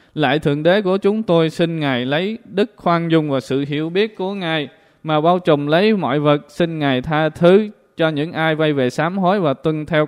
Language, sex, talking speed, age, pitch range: Vietnamese, male, 225 wpm, 20-39, 150-185 Hz